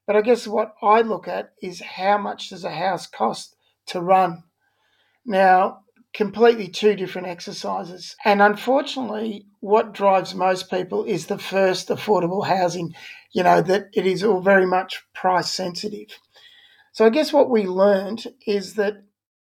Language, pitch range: English, 185-210 Hz